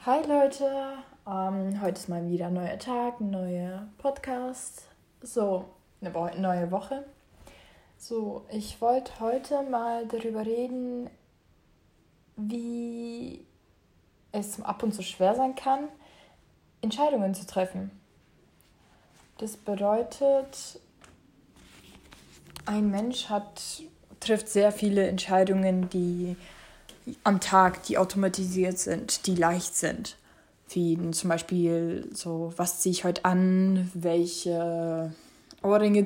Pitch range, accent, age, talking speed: 180-220 Hz, German, 20-39, 105 wpm